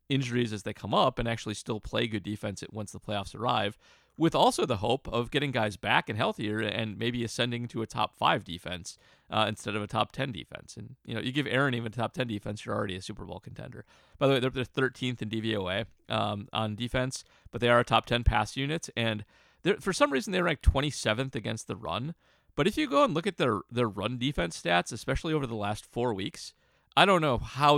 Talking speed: 230 wpm